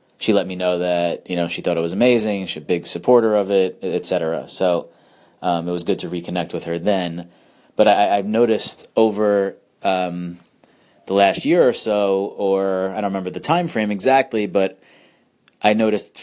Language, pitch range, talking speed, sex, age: English, 90-100 Hz, 190 wpm, male, 30-49